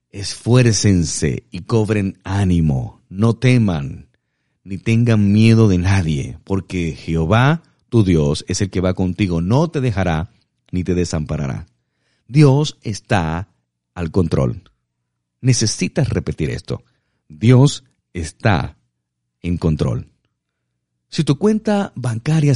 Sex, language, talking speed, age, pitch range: male, Spanish, 110 wpm, 50-69, 85-130 Hz